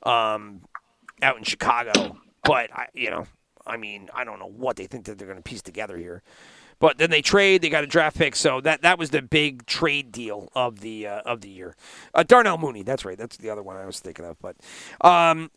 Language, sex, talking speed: English, male, 235 wpm